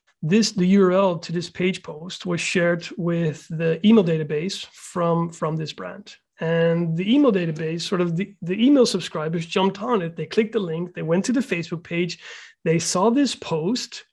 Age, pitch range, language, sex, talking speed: 30-49, 170-210 Hz, English, male, 185 wpm